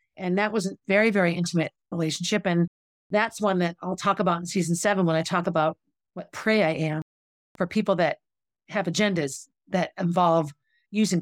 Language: English